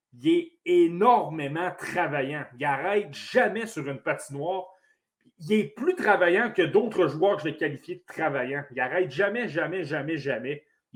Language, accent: French, Canadian